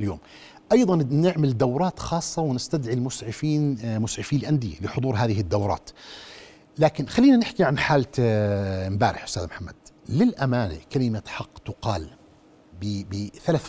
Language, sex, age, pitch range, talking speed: Arabic, male, 50-69, 110-150 Hz, 105 wpm